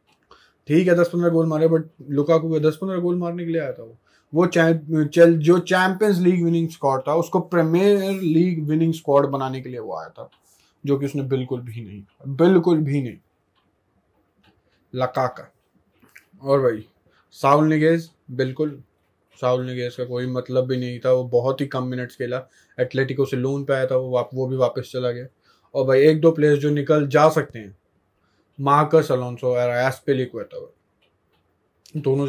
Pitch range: 125-155 Hz